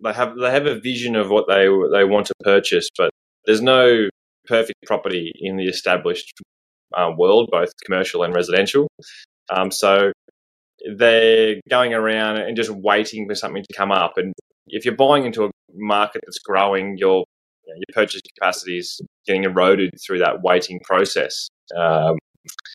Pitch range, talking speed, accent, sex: 95-135 Hz, 165 wpm, Australian, male